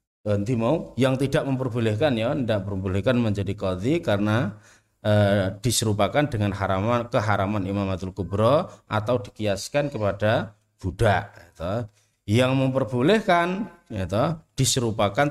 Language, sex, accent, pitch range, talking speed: Indonesian, male, native, 105-145 Hz, 105 wpm